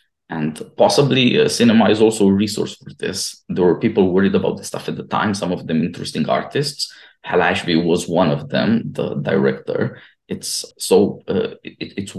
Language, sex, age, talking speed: English, male, 20-39, 180 wpm